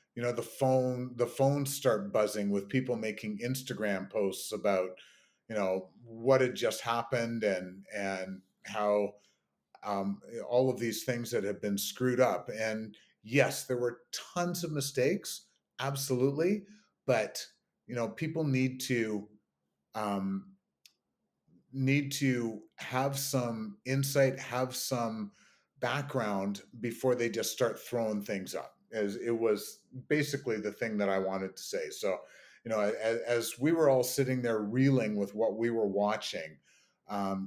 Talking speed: 145 wpm